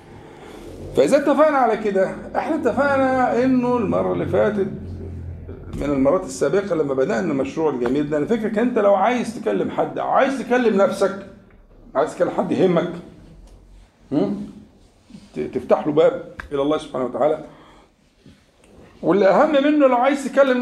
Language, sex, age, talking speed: Arabic, male, 50-69, 130 wpm